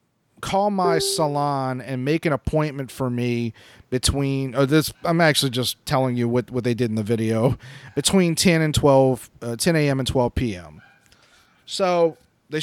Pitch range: 125-165 Hz